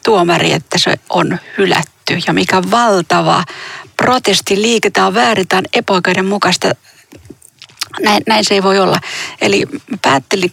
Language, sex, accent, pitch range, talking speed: Finnish, female, native, 185-225 Hz, 120 wpm